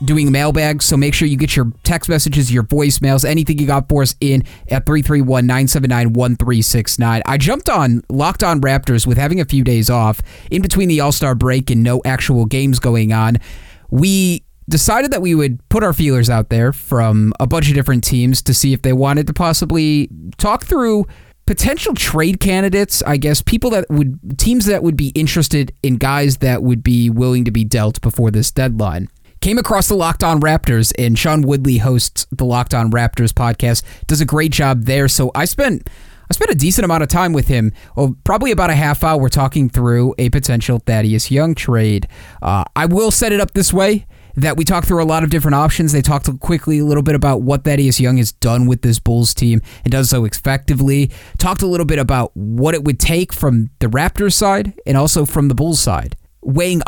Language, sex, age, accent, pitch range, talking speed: English, male, 30-49, American, 120-155 Hz, 205 wpm